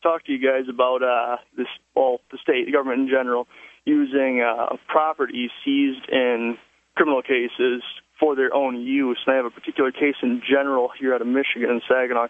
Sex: male